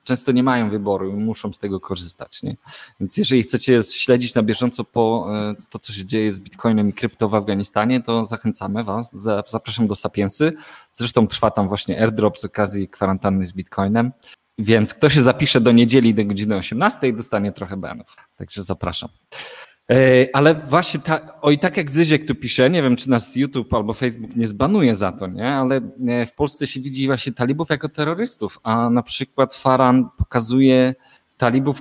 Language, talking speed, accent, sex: Polish, 175 wpm, native, male